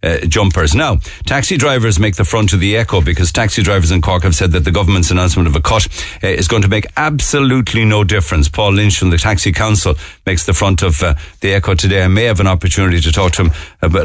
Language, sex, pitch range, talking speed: English, male, 85-110 Hz, 245 wpm